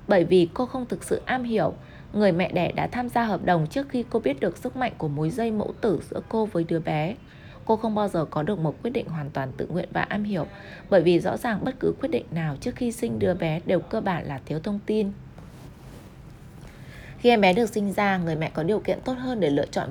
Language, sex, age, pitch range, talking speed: Vietnamese, female, 20-39, 165-230 Hz, 255 wpm